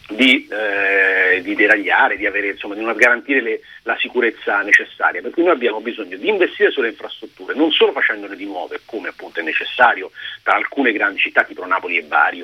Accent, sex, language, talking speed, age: native, male, Italian, 180 wpm, 40-59